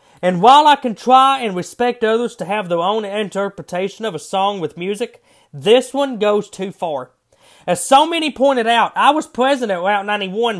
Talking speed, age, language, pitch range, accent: 195 wpm, 30-49, English, 180-240 Hz, American